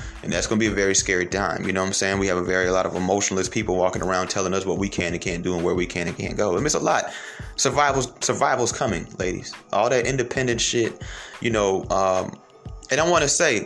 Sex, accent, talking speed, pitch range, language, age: male, American, 270 wpm, 95-115 Hz, English, 30-49